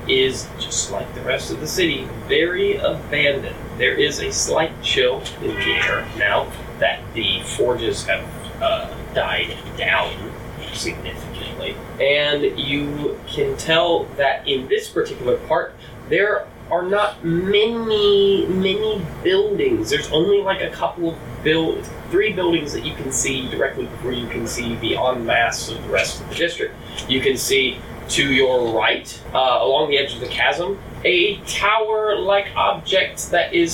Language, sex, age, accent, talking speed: English, male, 30-49, American, 155 wpm